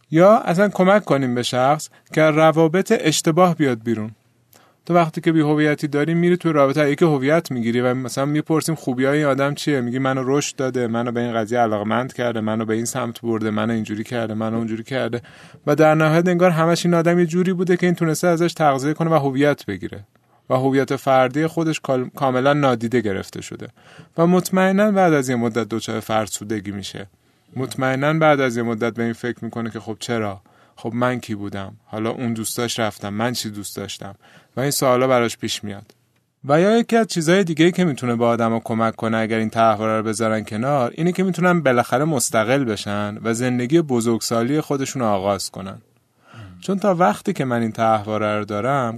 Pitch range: 115-155 Hz